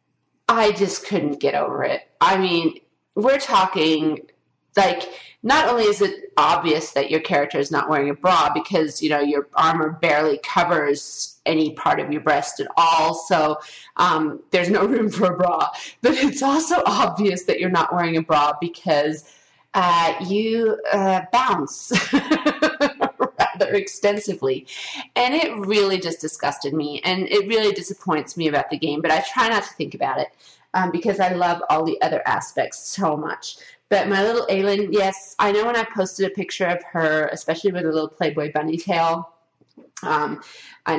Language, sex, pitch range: English, female, 155-200 Hz